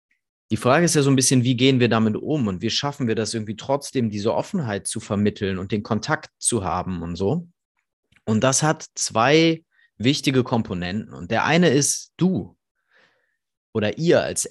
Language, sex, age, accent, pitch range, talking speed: German, male, 30-49, German, 110-135 Hz, 180 wpm